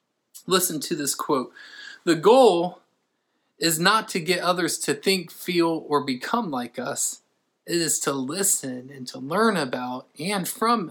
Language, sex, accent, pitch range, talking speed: English, male, American, 140-185 Hz, 155 wpm